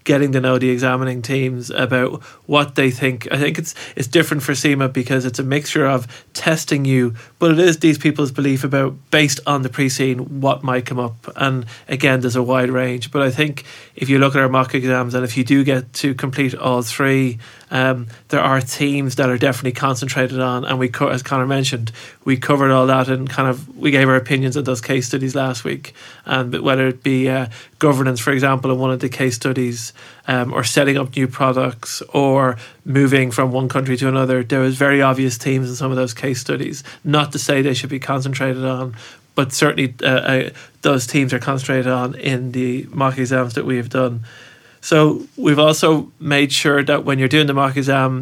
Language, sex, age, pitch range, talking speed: English, male, 30-49, 130-140 Hz, 215 wpm